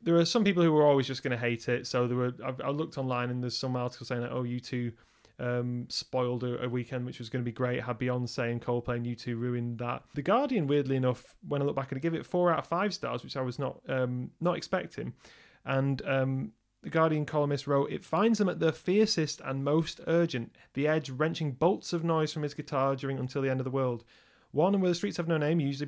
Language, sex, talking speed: English, male, 260 wpm